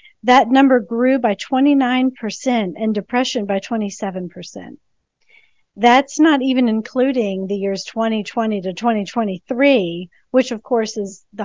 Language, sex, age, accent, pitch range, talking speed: English, female, 40-59, American, 190-230 Hz, 120 wpm